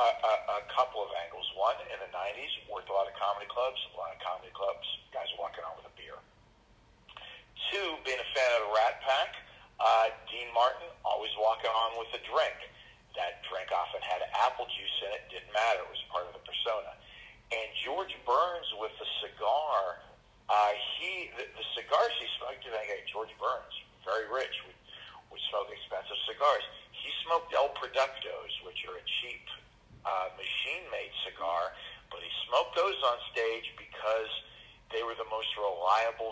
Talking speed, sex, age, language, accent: 175 wpm, male, 50-69, English, American